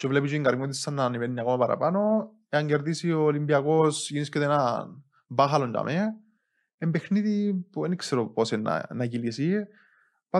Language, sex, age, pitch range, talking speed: Greek, male, 20-39, 130-165 Hz, 90 wpm